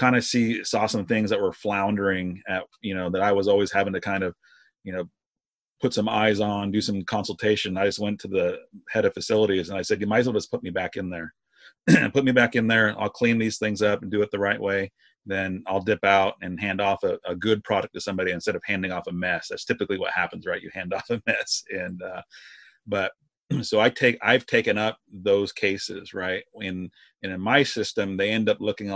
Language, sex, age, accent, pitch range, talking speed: English, male, 30-49, American, 95-110 Hz, 240 wpm